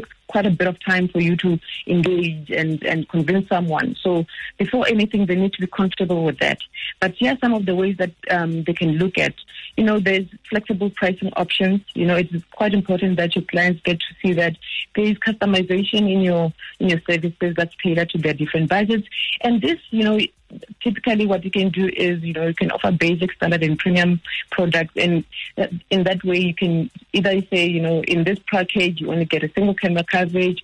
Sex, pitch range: female, 170-195 Hz